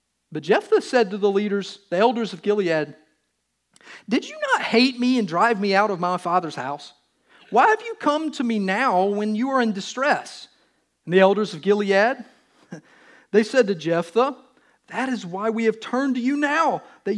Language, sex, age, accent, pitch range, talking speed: English, male, 40-59, American, 165-240 Hz, 190 wpm